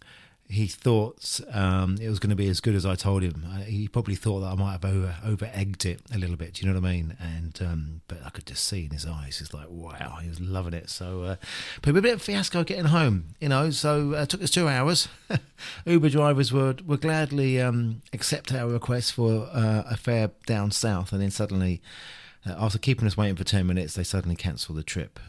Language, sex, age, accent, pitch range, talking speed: English, male, 40-59, British, 90-115 Hz, 240 wpm